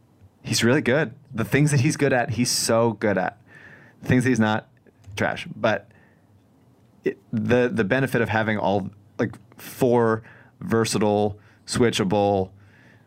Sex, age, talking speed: male, 30-49, 140 wpm